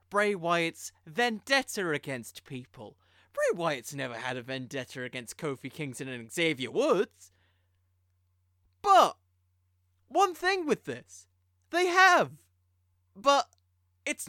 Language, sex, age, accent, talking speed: English, male, 20-39, British, 110 wpm